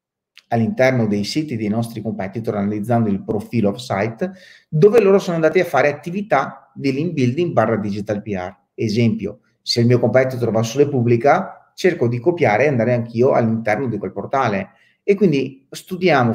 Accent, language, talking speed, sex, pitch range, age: native, Italian, 165 wpm, male, 115-160 Hz, 30-49